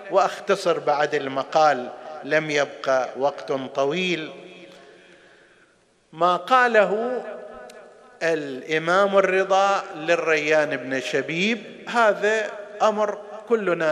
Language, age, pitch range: Arabic, 50-69, 135-180 Hz